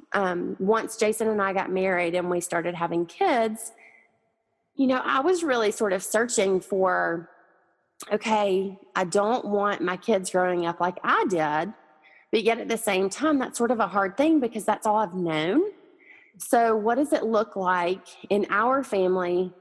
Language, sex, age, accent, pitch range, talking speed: English, female, 30-49, American, 180-225 Hz, 180 wpm